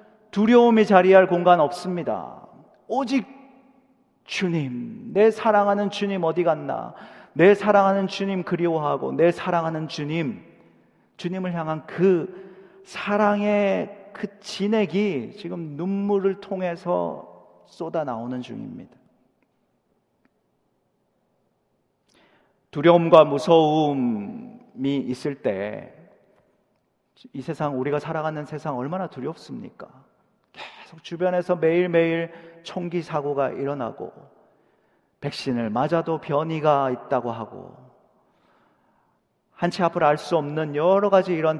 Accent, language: native, Korean